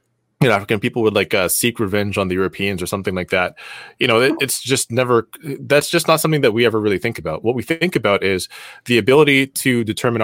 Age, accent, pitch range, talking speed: 20-39, American, 100-125 Hz, 235 wpm